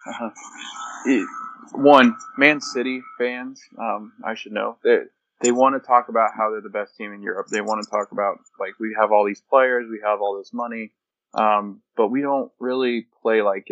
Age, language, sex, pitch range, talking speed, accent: 20-39, English, male, 105-130 Hz, 200 wpm, American